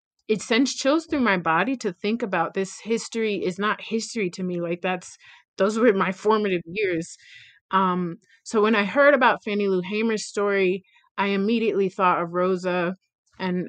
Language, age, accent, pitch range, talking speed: English, 30-49, American, 180-210 Hz, 170 wpm